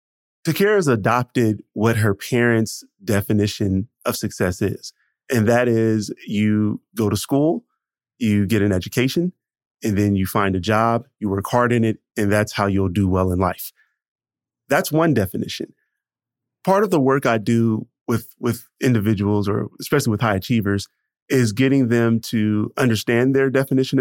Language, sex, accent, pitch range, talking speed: English, male, American, 105-125 Hz, 160 wpm